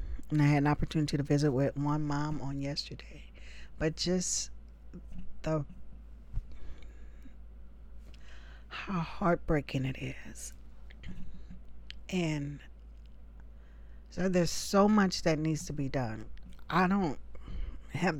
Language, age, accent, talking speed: English, 40-59, American, 105 wpm